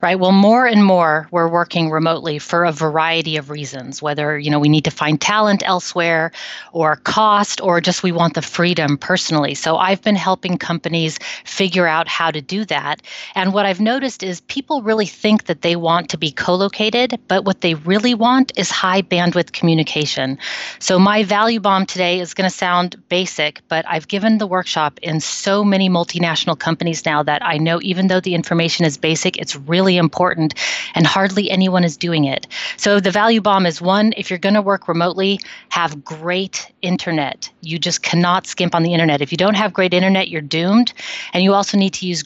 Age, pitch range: 30-49, 165-200 Hz